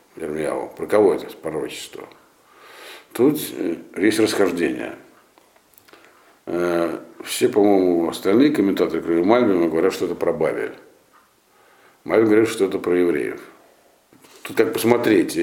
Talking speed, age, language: 100 wpm, 60-79, Russian